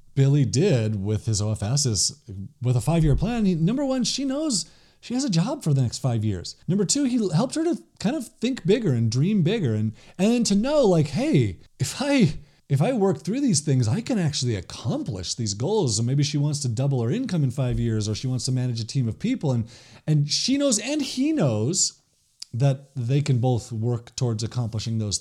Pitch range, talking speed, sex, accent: 120-180 Hz, 220 wpm, male, American